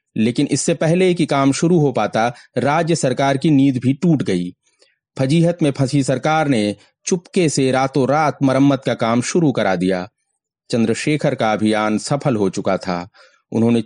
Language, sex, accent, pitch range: Hindi, male, native, 115-150 Hz